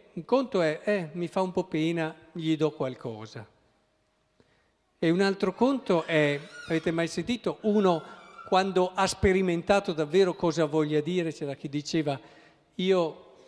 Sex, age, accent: male, 50-69, native